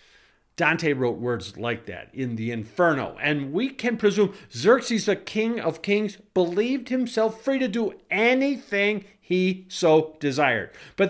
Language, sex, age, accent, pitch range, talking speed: English, male, 50-69, American, 140-215 Hz, 145 wpm